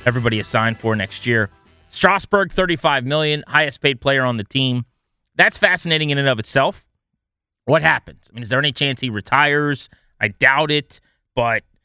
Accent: American